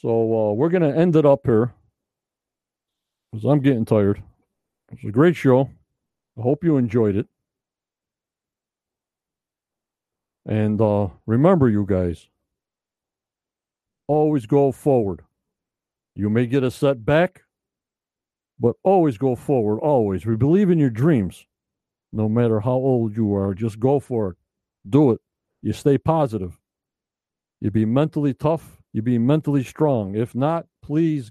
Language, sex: English, male